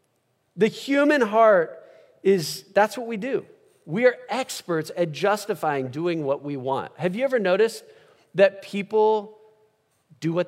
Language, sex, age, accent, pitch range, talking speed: English, male, 40-59, American, 165-225 Hz, 145 wpm